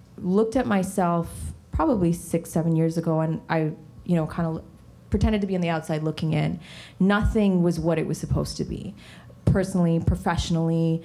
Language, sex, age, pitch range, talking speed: English, female, 20-39, 160-180 Hz, 180 wpm